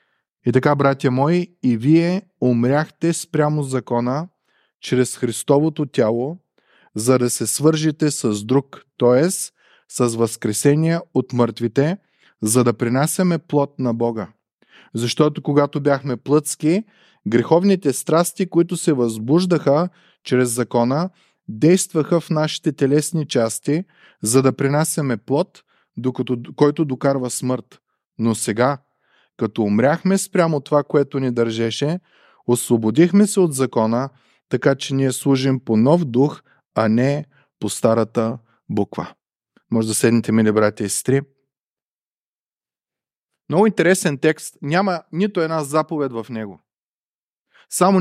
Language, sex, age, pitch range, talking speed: Bulgarian, male, 20-39, 125-160 Hz, 115 wpm